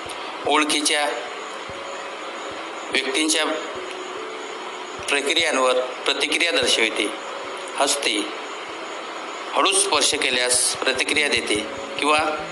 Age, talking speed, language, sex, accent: 60-79, 55 wpm, Marathi, male, native